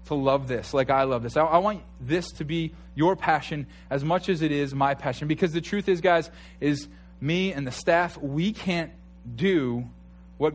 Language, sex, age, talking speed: English, male, 20-39, 205 wpm